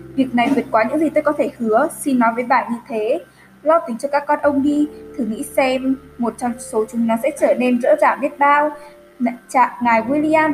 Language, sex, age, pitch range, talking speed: Vietnamese, female, 10-29, 230-290 Hz, 235 wpm